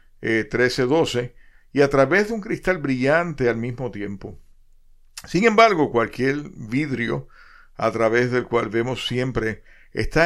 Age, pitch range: 50-69, 110-140 Hz